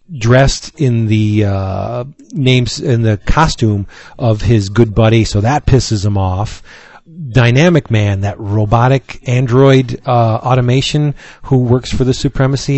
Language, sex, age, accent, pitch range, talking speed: English, male, 40-59, American, 115-160 Hz, 135 wpm